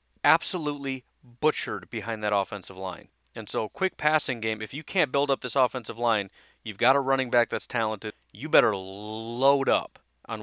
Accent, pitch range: American, 105-130 Hz